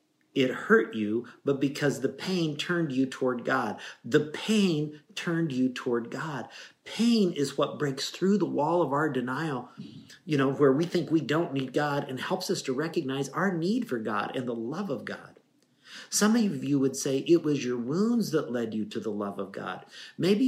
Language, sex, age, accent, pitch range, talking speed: English, male, 50-69, American, 120-175 Hz, 200 wpm